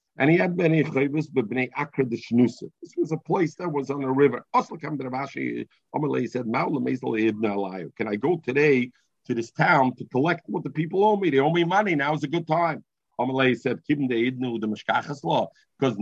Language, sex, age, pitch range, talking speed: English, male, 50-69, 120-155 Hz, 185 wpm